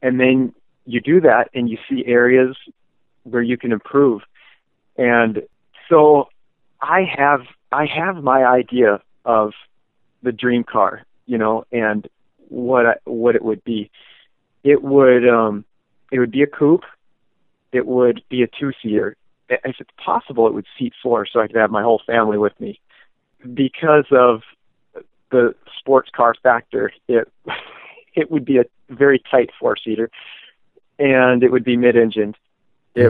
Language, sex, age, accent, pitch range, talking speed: English, male, 40-59, American, 110-130 Hz, 155 wpm